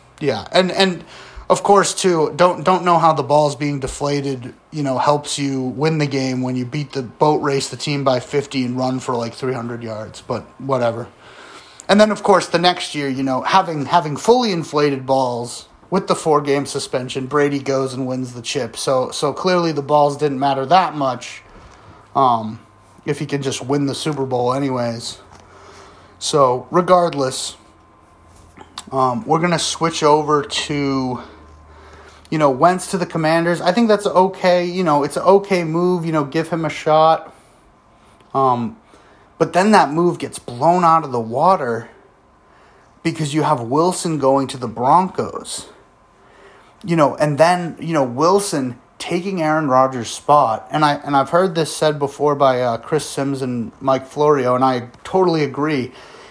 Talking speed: 175 wpm